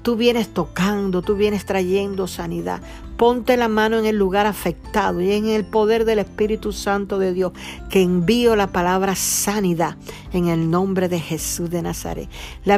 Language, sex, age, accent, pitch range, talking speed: Spanish, female, 50-69, American, 180-215 Hz, 170 wpm